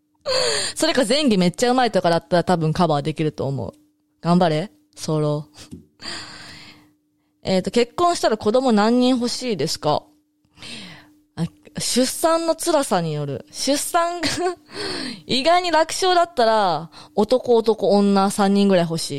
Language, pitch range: Japanese, 155-260 Hz